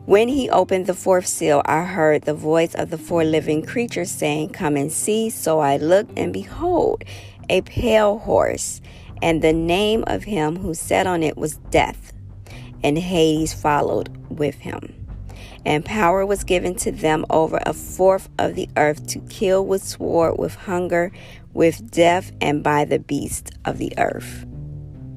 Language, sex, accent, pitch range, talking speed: English, female, American, 125-185 Hz, 165 wpm